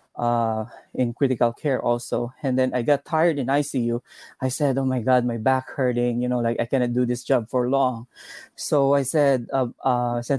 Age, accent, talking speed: 20-39, Filipino, 210 wpm